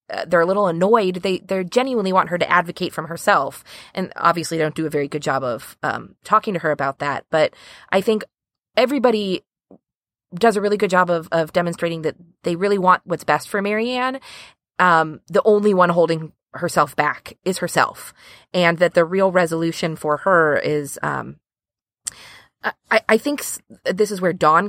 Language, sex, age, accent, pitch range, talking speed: English, female, 20-39, American, 165-205 Hz, 180 wpm